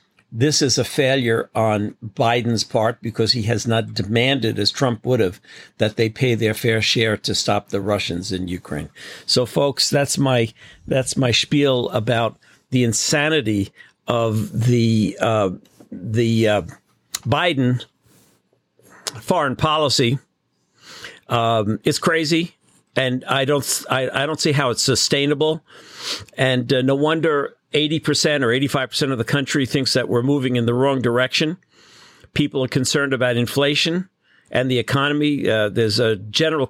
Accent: American